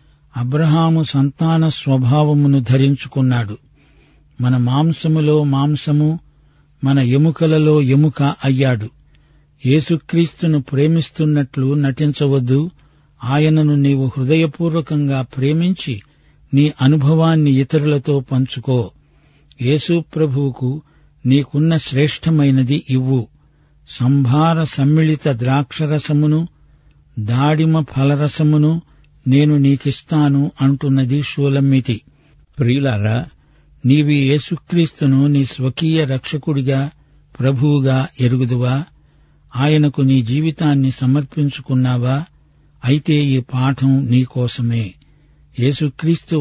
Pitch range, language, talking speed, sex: 130-150 Hz, Telugu, 70 wpm, male